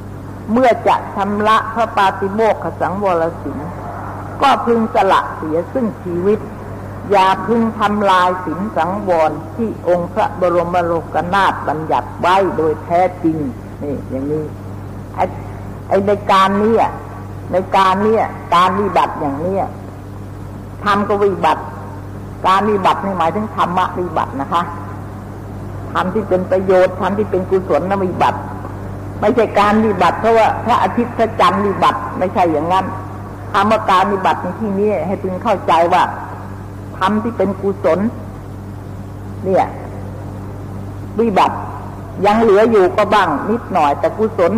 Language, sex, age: Thai, female, 60-79